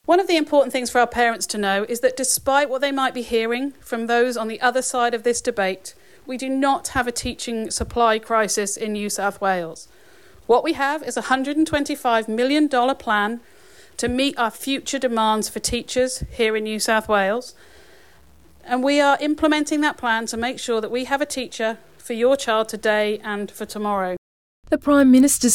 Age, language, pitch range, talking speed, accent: 40-59, English, 215-260 Hz, 195 wpm, British